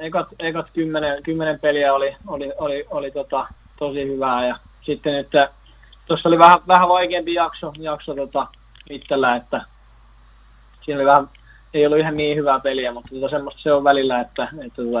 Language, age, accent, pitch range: Finnish, 20-39, native, 120-150 Hz